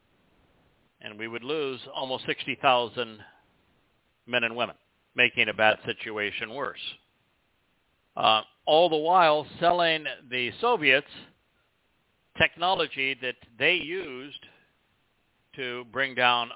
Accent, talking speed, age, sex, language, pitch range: American, 100 wpm, 60-79, male, English, 120-155 Hz